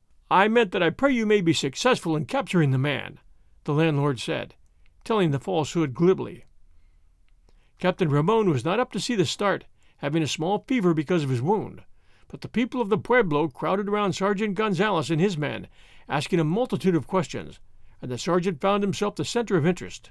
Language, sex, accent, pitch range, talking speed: English, male, American, 140-205 Hz, 190 wpm